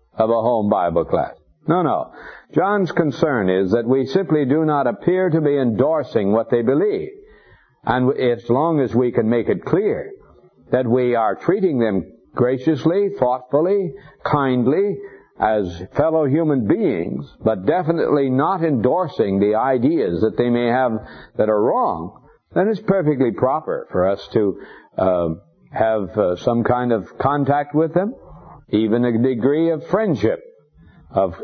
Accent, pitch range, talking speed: American, 120-160 Hz, 150 wpm